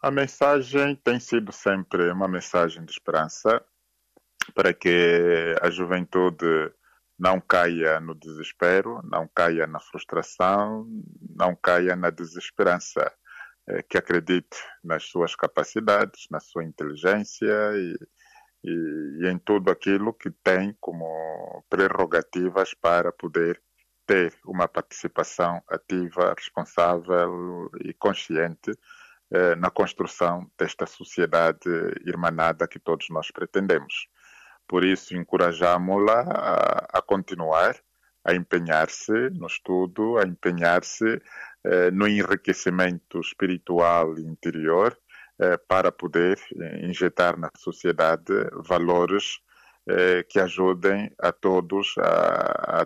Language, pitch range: Portuguese, 85-100 Hz